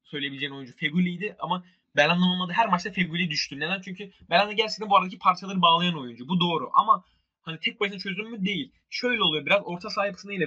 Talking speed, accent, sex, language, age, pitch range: 195 wpm, native, male, Turkish, 20-39, 150-205 Hz